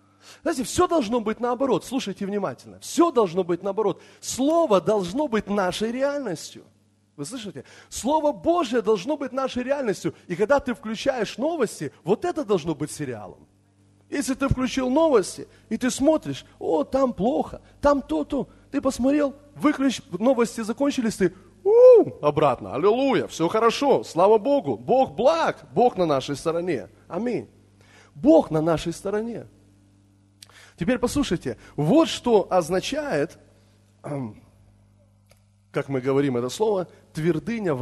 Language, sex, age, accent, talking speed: Russian, male, 30-49, native, 130 wpm